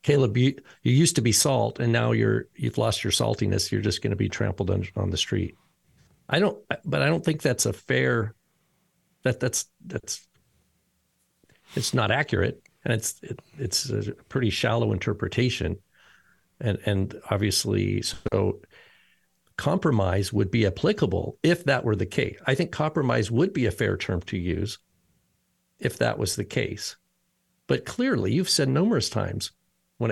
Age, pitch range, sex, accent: 50-69, 105-140 Hz, male, American